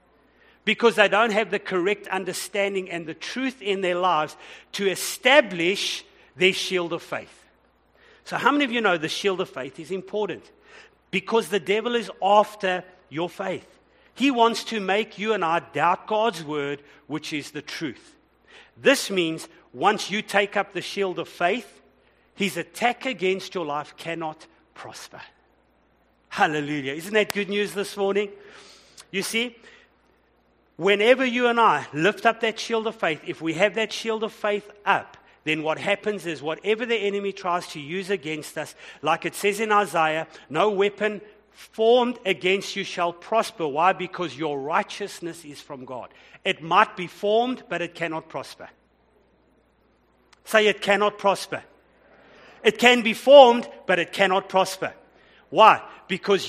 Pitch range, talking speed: 165-215 Hz, 160 wpm